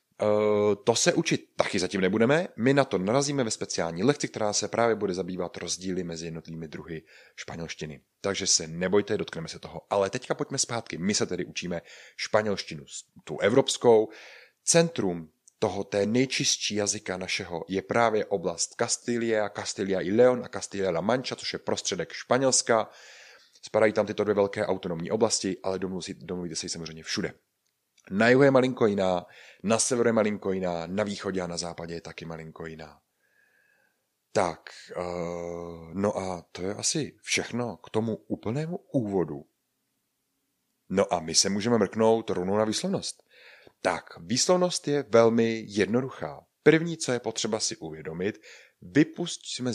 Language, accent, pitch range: Czech, native, 90-120 Hz